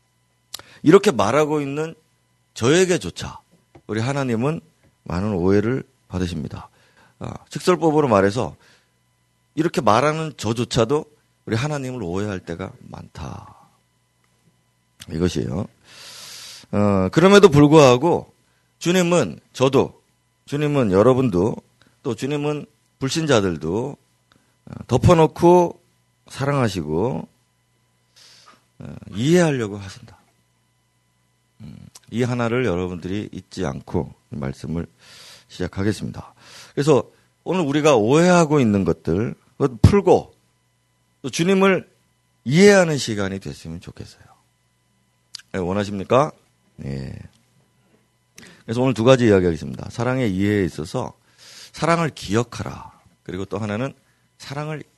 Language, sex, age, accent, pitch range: Korean, male, 40-59, native, 95-145 Hz